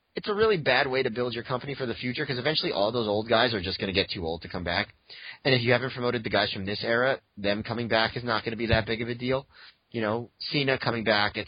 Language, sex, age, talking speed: English, male, 30-49, 300 wpm